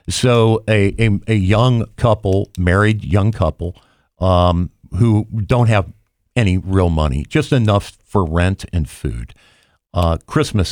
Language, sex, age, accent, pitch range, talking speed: English, male, 50-69, American, 85-105 Hz, 135 wpm